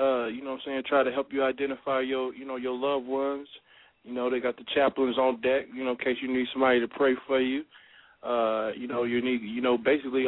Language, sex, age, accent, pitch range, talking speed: English, male, 20-39, American, 120-135 Hz, 255 wpm